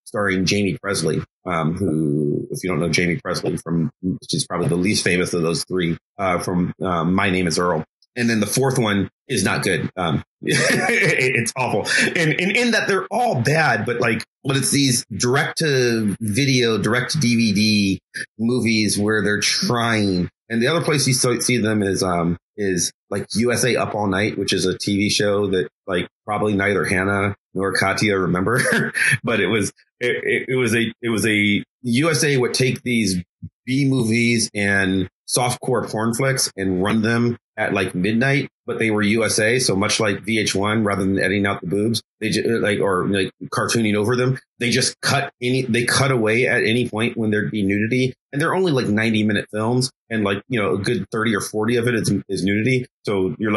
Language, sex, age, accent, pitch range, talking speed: English, male, 30-49, American, 95-120 Hz, 190 wpm